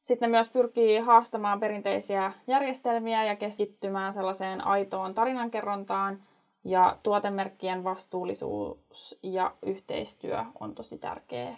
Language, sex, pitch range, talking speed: Finnish, female, 190-240 Hz, 100 wpm